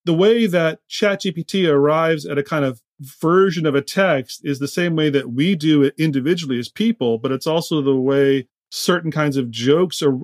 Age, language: 30-49, English